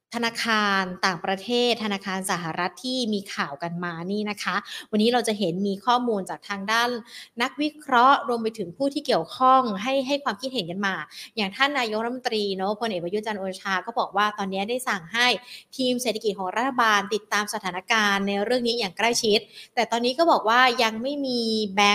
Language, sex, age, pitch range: Thai, female, 20-39, 195-245 Hz